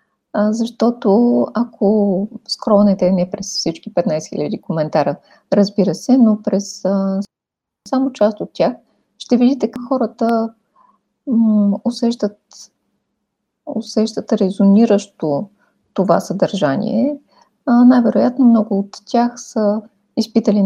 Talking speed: 105 wpm